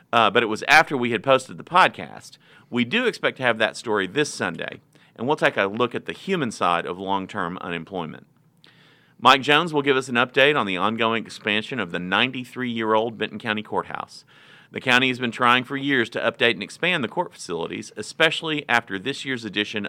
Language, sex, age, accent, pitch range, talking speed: English, male, 40-59, American, 105-150 Hz, 200 wpm